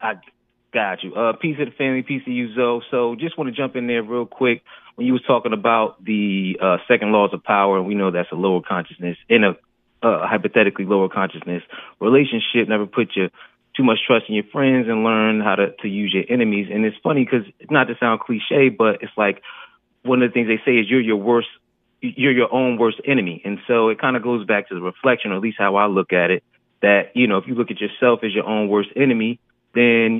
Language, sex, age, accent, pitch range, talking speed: English, male, 30-49, American, 100-120 Hz, 240 wpm